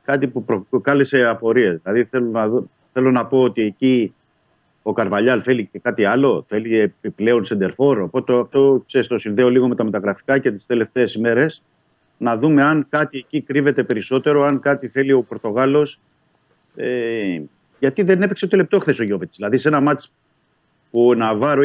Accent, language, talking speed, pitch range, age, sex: native, Greek, 175 wpm, 115-140 Hz, 50-69, male